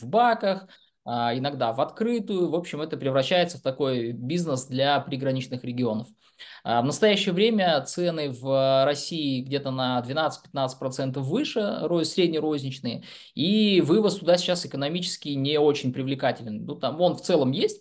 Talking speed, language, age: 130 wpm, Russian, 20-39